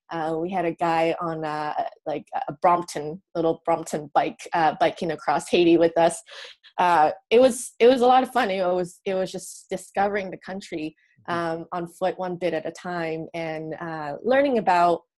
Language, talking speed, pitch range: English, 190 wpm, 165-205 Hz